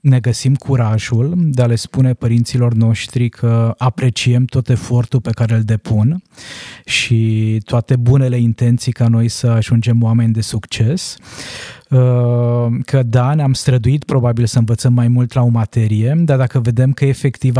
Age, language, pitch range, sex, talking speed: 20-39, Romanian, 115-135 Hz, male, 155 wpm